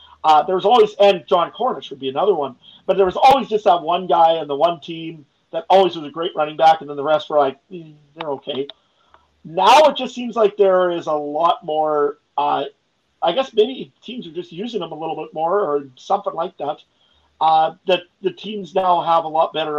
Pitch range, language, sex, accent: 145-195 Hz, English, male, American